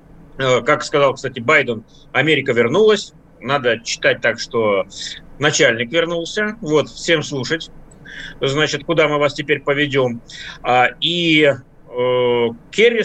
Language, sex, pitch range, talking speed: Russian, male, 140-175 Hz, 105 wpm